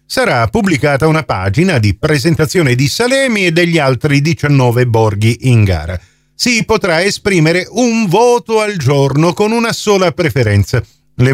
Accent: native